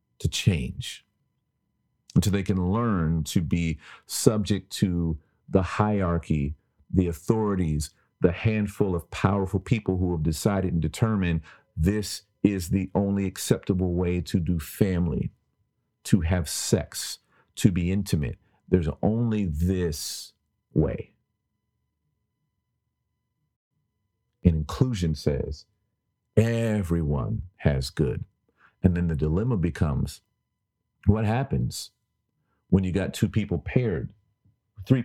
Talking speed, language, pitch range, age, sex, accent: 105 wpm, English, 85-110 Hz, 50-69, male, American